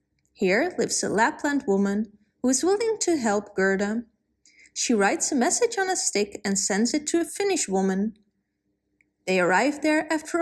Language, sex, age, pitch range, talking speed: English, female, 20-39, 200-280 Hz, 165 wpm